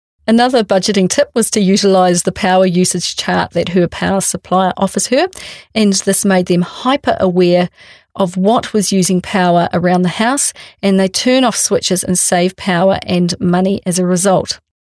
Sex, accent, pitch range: female, Australian, 180-225 Hz